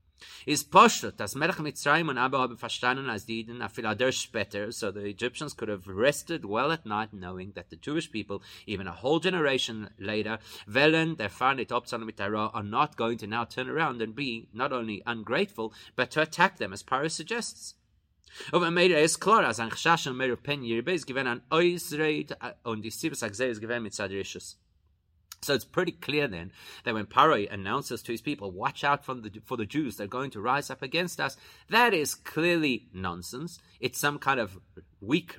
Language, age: English, 30-49